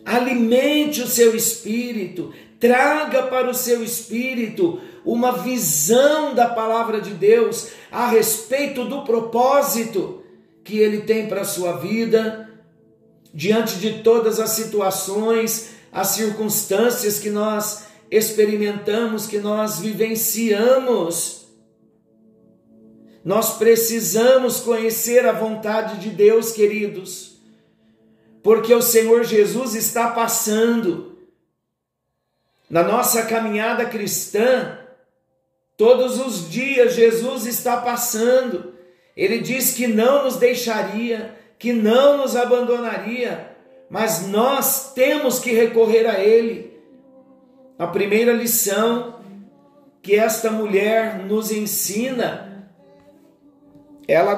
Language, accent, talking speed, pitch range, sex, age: Portuguese, Brazilian, 100 wpm, 210-245 Hz, male, 50-69